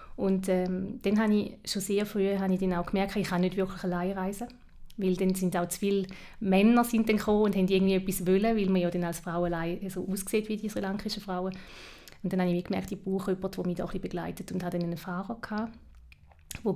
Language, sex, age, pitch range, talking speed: German, female, 30-49, 180-205 Hz, 255 wpm